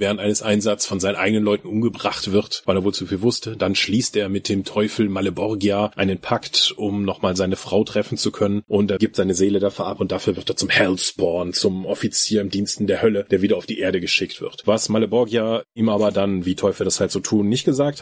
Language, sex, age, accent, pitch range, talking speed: German, male, 30-49, German, 100-130 Hz, 235 wpm